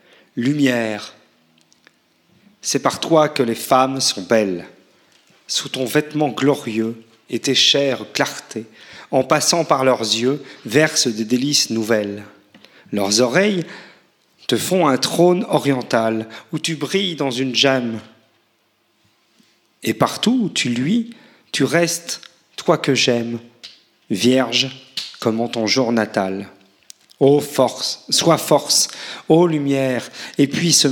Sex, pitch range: male, 115-145 Hz